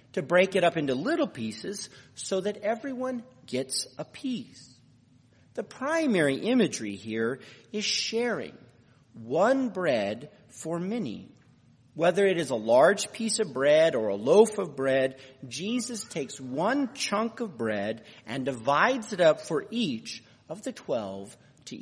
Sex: male